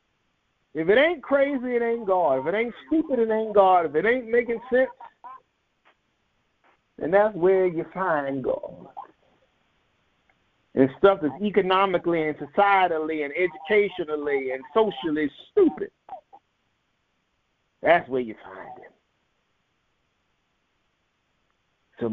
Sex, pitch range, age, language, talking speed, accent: male, 170-255 Hz, 50-69, English, 115 wpm, American